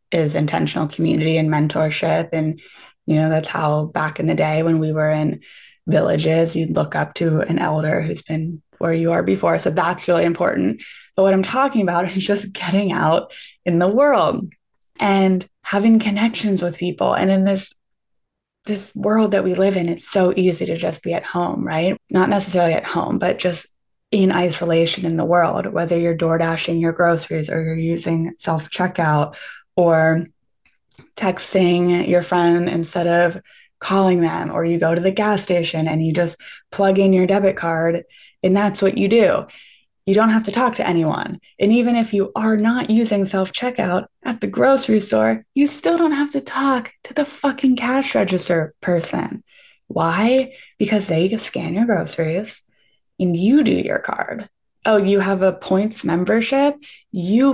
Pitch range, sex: 165-210 Hz, female